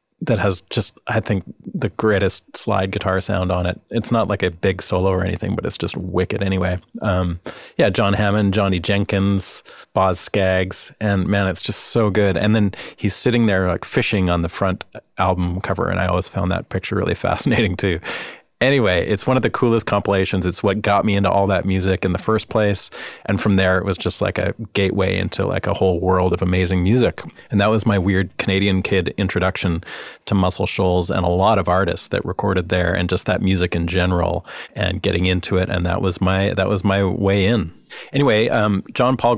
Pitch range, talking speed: 90-105 Hz, 210 wpm